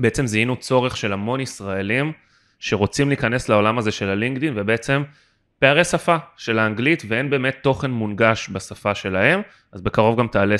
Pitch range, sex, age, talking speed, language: 105-135 Hz, male, 20-39, 155 wpm, Hebrew